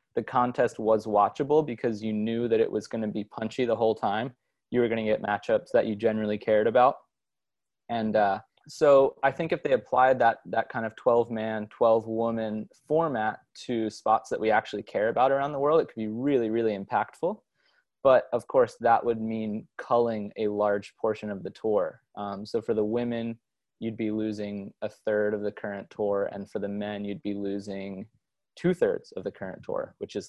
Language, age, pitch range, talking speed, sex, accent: English, 20-39, 100-120 Hz, 200 wpm, male, American